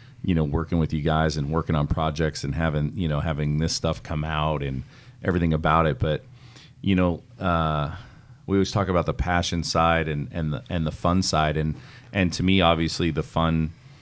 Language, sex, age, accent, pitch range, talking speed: English, male, 30-49, American, 80-95 Hz, 200 wpm